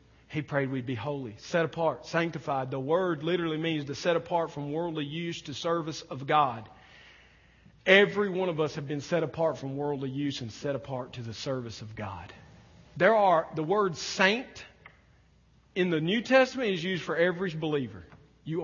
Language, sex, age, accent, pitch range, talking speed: English, male, 40-59, American, 130-165 Hz, 180 wpm